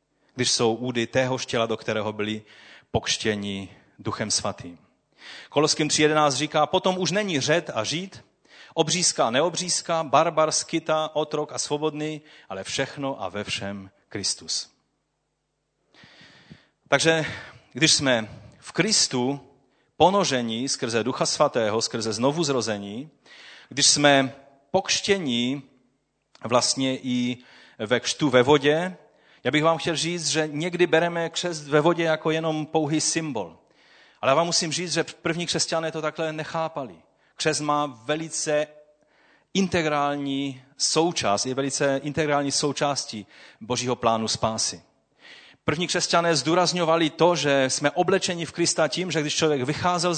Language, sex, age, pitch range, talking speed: Czech, male, 30-49, 130-160 Hz, 125 wpm